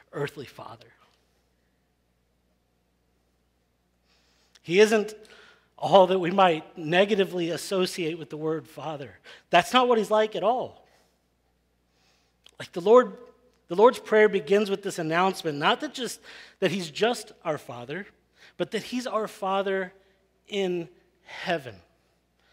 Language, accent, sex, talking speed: English, American, male, 125 wpm